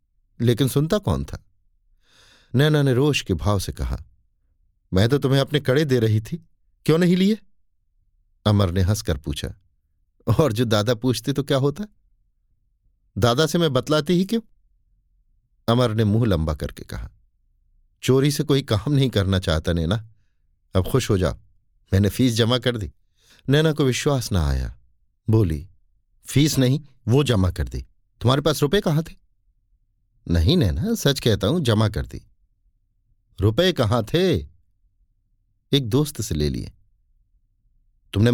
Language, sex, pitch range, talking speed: Hindi, male, 95-135 Hz, 150 wpm